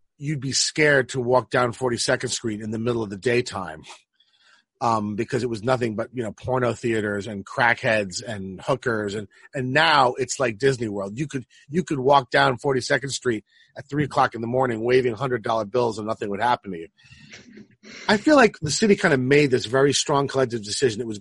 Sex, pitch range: male, 120-185 Hz